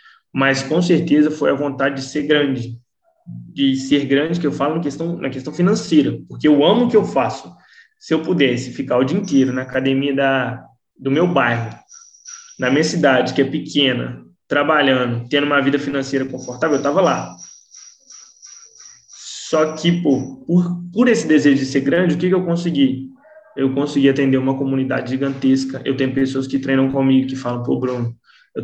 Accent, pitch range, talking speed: Brazilian, 125-145 Hz, 180 wpm